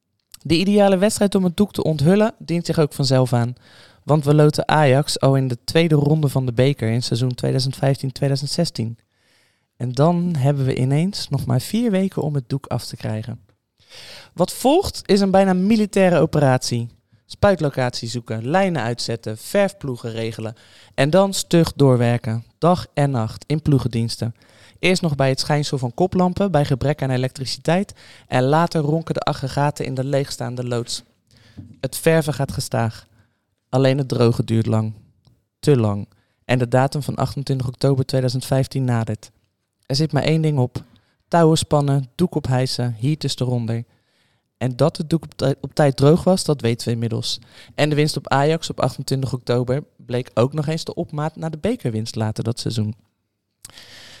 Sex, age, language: male, 20-39, Dutch